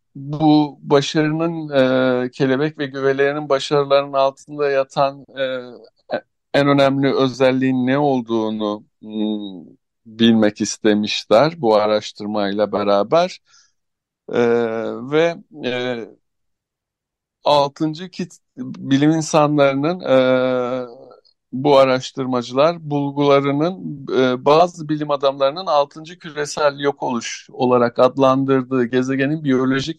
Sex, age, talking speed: male, 60-79, 85 wpm